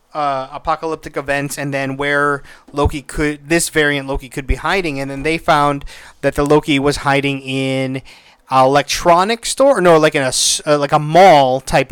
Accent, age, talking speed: American, 30-49, 180 wpm